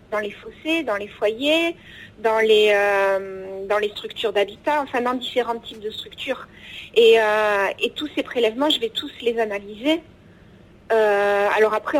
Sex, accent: female, French